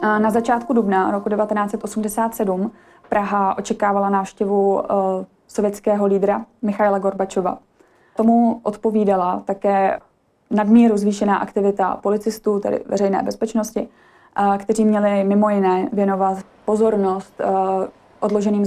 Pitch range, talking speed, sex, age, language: 195-220 Hz, 95 wpm, female, 20-39, Czech